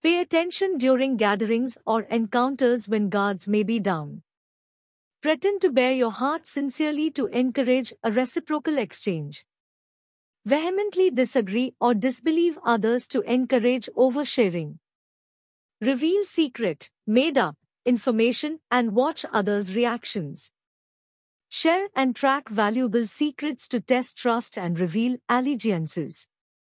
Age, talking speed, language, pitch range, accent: 50-69, 110 wpm, Hindi, 220-300 Hz, native